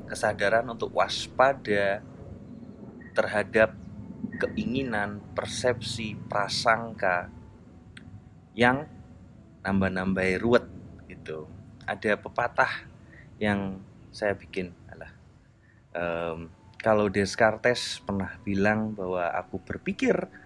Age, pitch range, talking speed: 30-49, 95-115 Hz, 70 wpm